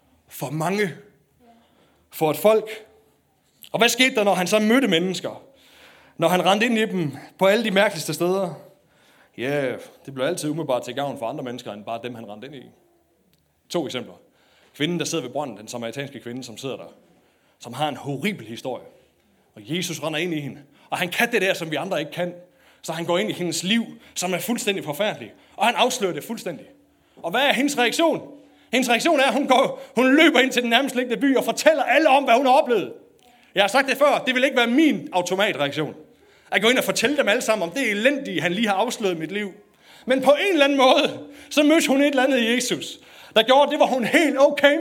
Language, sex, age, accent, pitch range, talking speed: Danish, male, 30-49, native, 155-260 Hz, 225 wpm